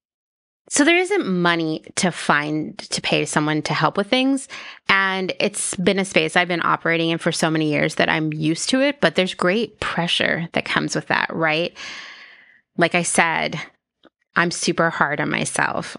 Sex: female